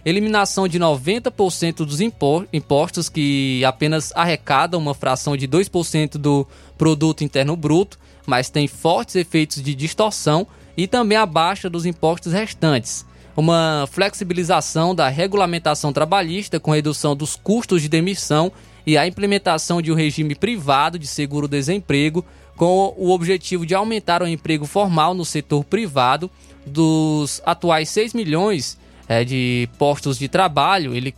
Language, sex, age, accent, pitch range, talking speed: Portuguese, male, 20-39, Brazilian, 145-180 Hz, 135 wpm